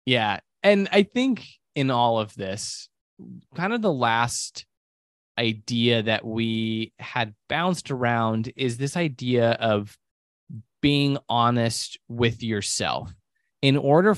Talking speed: 120 wpm